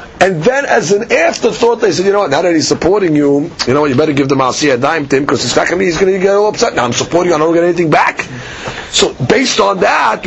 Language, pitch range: English, 150-195 Hz